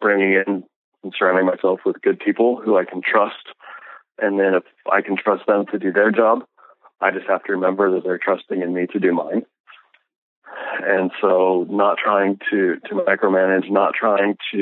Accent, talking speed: American, 190 wpm